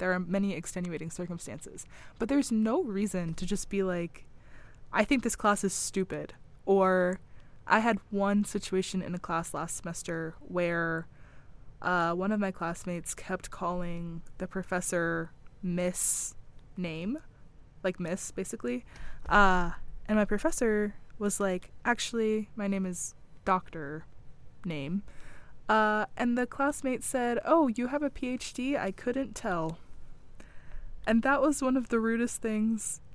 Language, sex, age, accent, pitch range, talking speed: English, female, 20-39, American, 175-250 Hz, 140 wpm